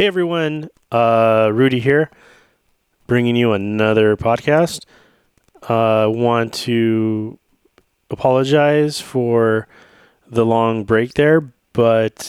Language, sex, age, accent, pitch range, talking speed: English, male, 20-39, American, 100-115 Hz, 95 wpm